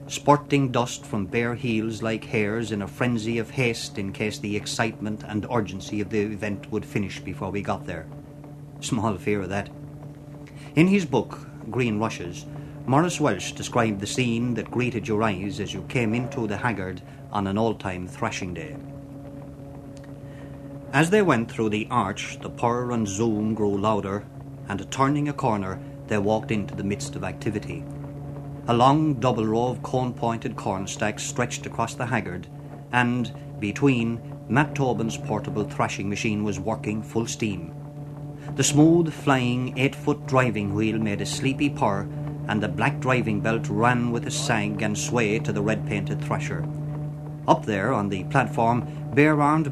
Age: 30-49